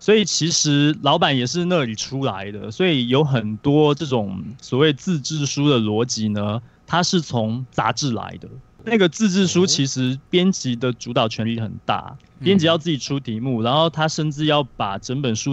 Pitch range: 115-150 Hz